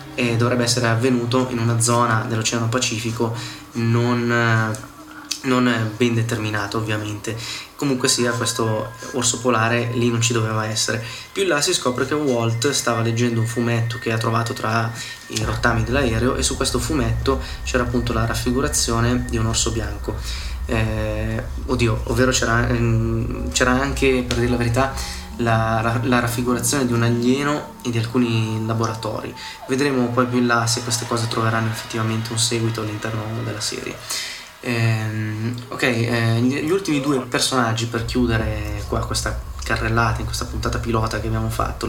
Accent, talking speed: native, 155 wpm